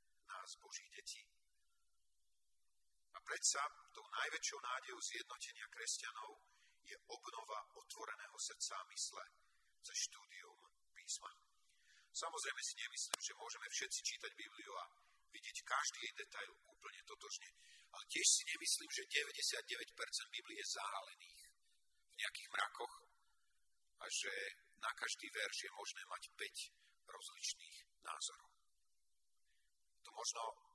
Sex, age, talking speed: male, 50-69, 110 wpm